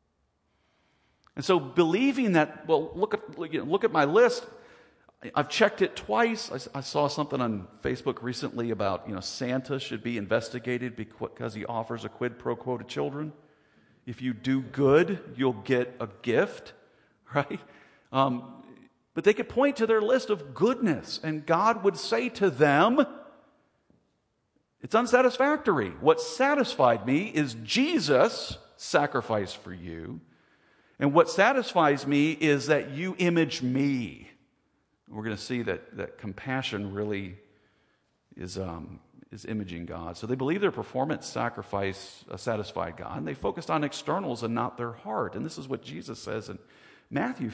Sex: male